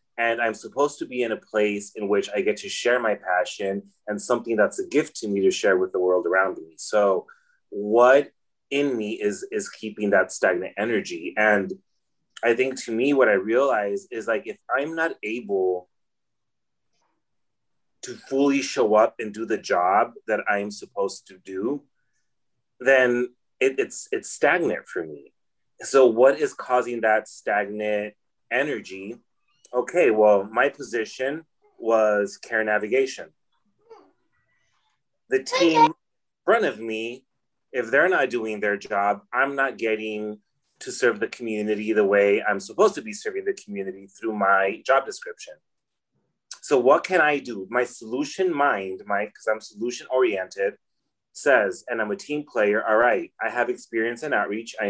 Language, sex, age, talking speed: English, male, 30-49, 160 wpm